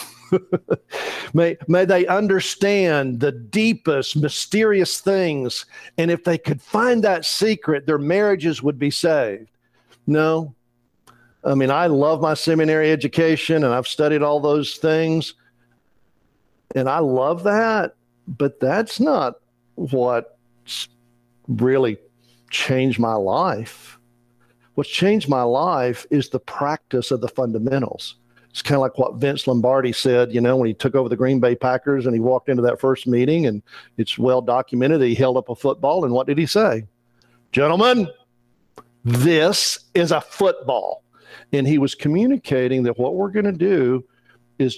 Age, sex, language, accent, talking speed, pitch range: 50-69, male, English, American, 150 wpm, 120-160 Hz